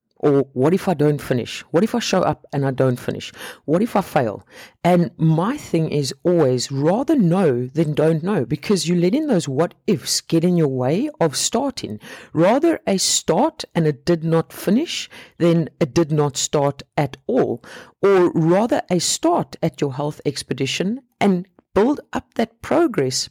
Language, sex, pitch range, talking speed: English, female, 130-185 Hz, 180 wpm